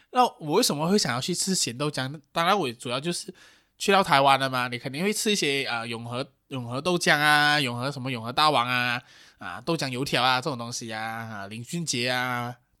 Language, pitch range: Chinese, 125-175 Hz